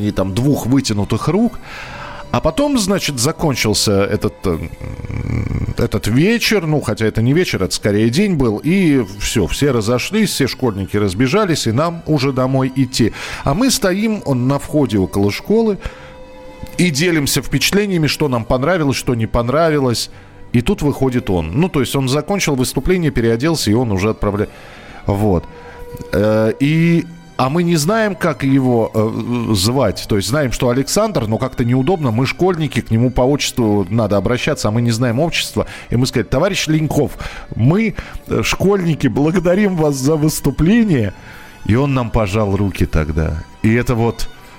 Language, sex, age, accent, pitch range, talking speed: Russian, male, 40-59, native, 110-155 Hz, 155 wpm